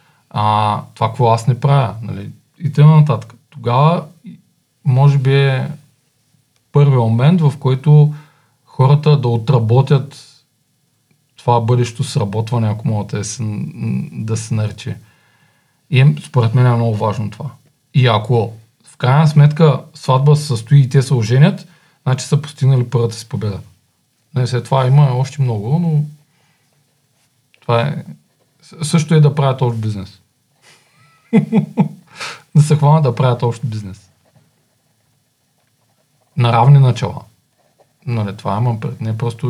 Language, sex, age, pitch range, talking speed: Bulgarian, male, 40-59, 120-150 Hz, 130 wpm